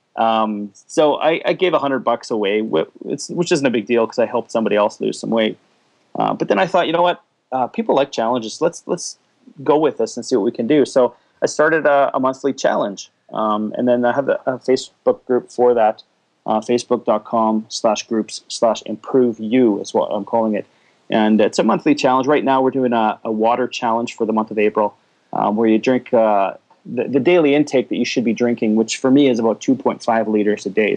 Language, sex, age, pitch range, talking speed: English, male, 30-49, 110-135 Hz, 230 wpm